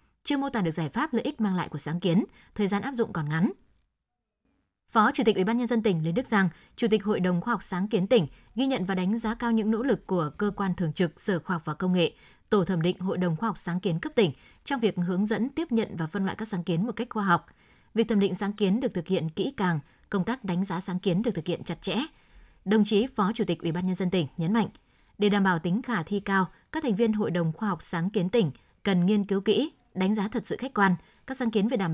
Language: Vietnamese